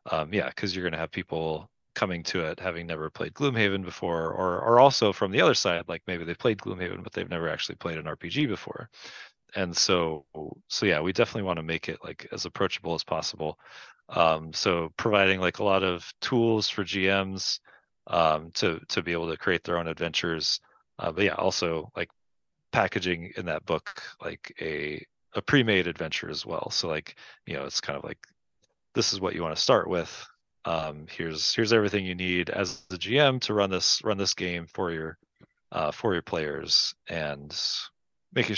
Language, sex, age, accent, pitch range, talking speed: English, male, 30-49, American, 85-105 Hz, 195 wpm